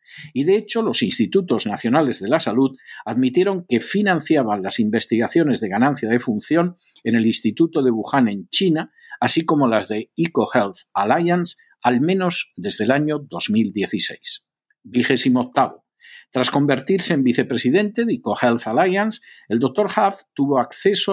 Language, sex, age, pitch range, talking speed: Spanish, male, 50-69, 130-195 Hz, 140 wpm